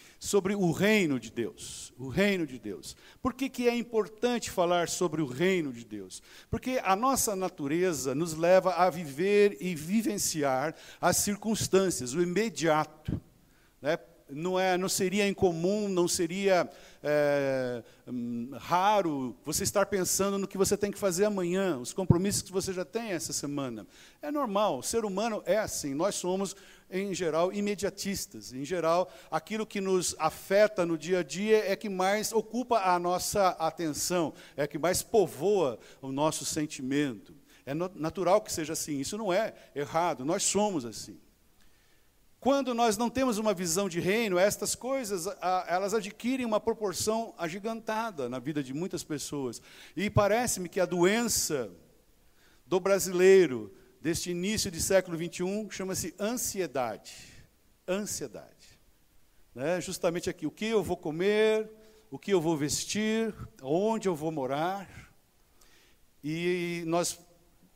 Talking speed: 145 wpm